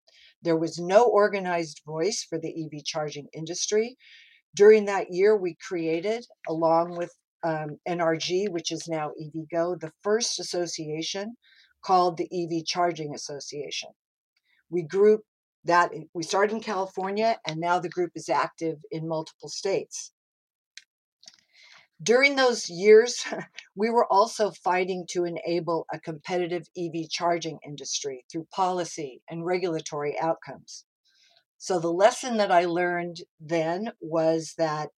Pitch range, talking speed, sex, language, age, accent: 160-205 Hz, 130 wpm, female, English, 50-69, American